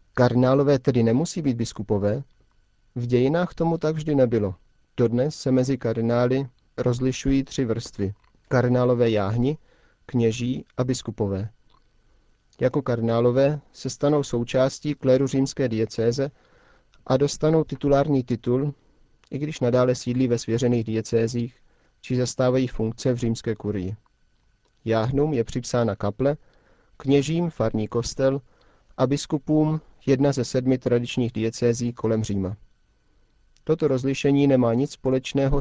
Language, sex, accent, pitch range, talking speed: Czech, male, native, 115-135 Hz, 115 wpm